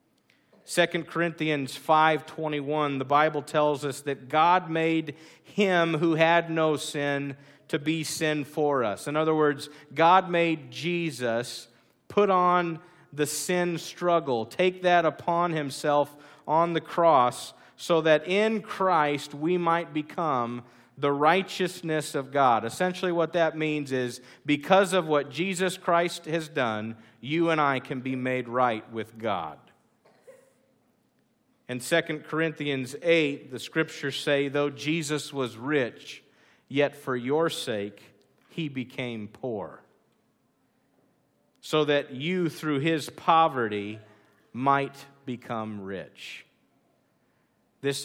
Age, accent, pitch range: 40-59, American, 125-160 Hz